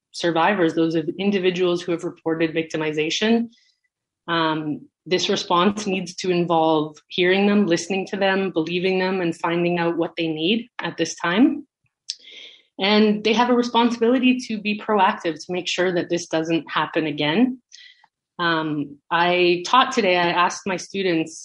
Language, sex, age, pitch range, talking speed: English, female, 30-49, 165-200 Hz, 150 wpm